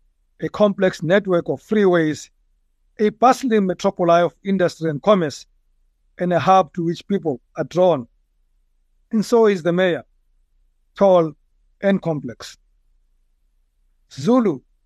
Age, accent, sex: 60-79, South African, male